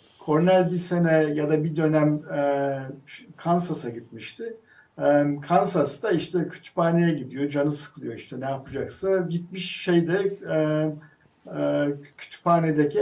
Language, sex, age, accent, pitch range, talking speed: Turkish, male, 50-69, native, 145-180 Hz, 95 wpm